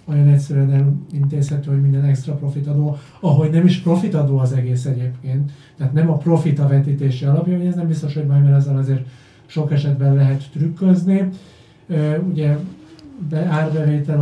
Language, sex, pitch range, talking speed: Hungarian, male, 140-155 Hz, 160 wpm